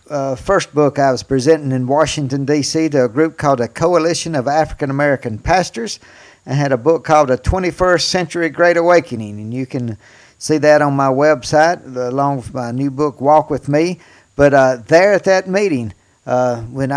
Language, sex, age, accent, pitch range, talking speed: English, male, 50-69, American, 130-165 Hz, 185 wpm